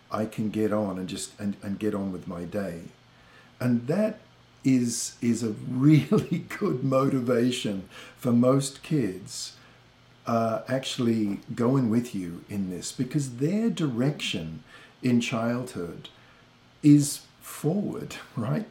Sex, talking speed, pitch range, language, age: male, 125 wpm, 110-140 Hz, English, 50-69